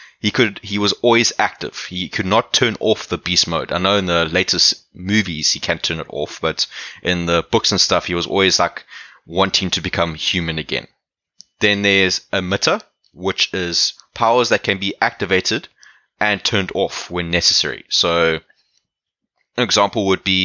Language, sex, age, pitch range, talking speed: English, male, 20-39, 85-100 Hz, 175 wpm